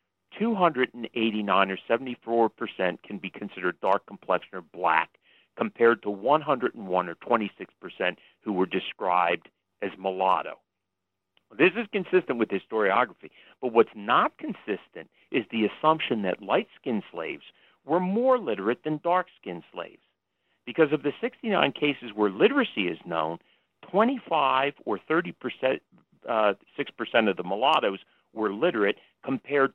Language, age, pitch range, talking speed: English, 50-69, 95-140 Hz, 125 wpm